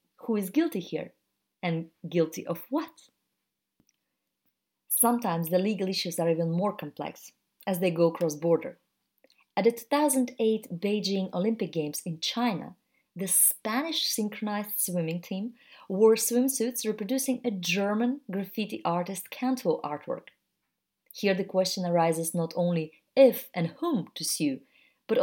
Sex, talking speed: female, 130 wpm